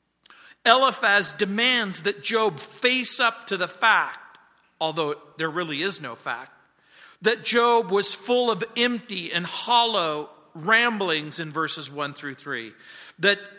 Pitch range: 170-235 Hz